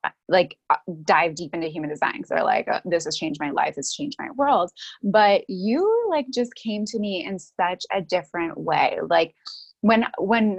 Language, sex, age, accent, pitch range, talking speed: English, female, 20-39, American, 180-230 Hz, 185 wpm